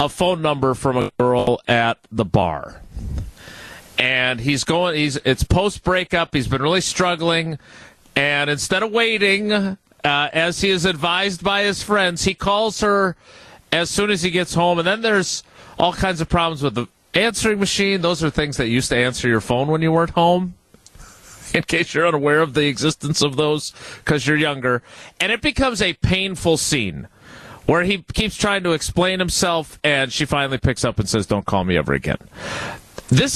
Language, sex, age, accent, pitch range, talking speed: English, male, 40-59, American, 140-200 Hz, 185 wpm